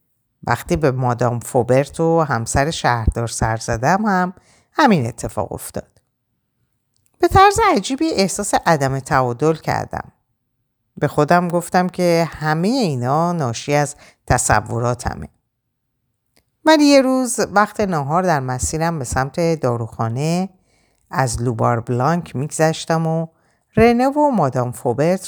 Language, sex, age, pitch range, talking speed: Persian, female, 50-69, 120-180 Hz, 115 wpm